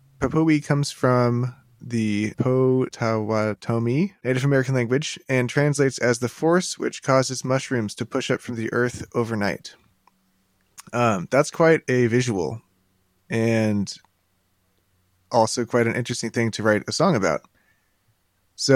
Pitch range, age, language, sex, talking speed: 105-130 Hz, 20-39, English, male, 130 wpm